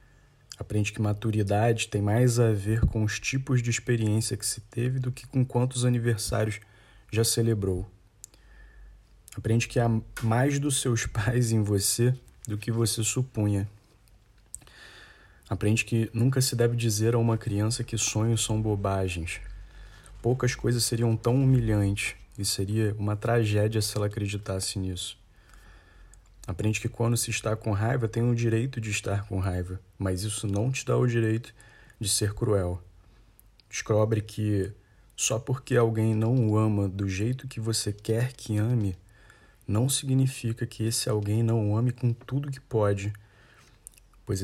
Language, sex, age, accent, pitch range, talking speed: Portuguese, male, 20-39, Brazilian, 105-120 Hz, 155 wpm